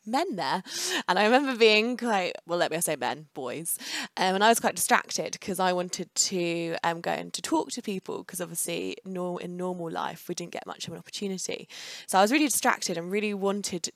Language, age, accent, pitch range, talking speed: English, 20-39, British, 170-205 Hz, 215 wpm